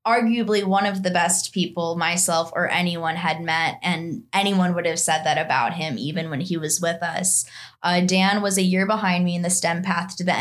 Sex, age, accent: female, 10-29, American